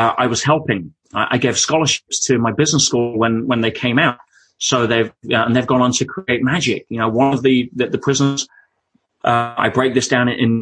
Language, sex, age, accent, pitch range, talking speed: English, male, 30-49, British, 115-135 Hz, 230 wpm